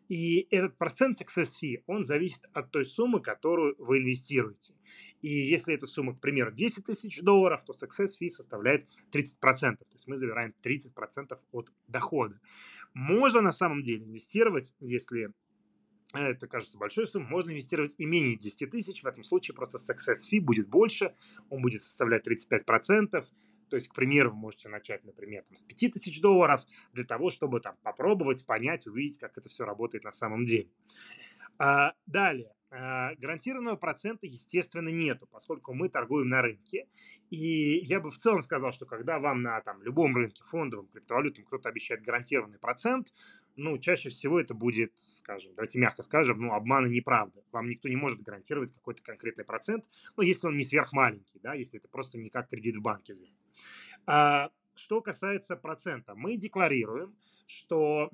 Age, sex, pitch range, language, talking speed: 30-49, male, 125-190 Hz, Russian, 165 wpm